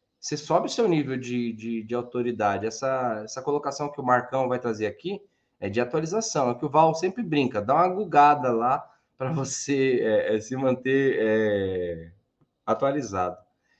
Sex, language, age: male, Portuguese, 20-39